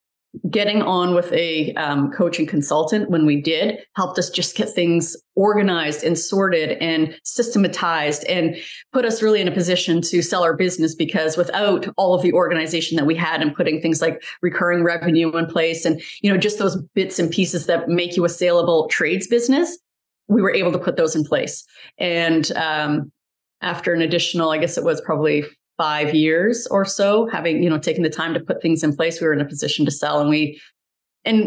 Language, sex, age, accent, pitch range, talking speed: English, female, 30-49, American, 165-200 Hz, 200 wpm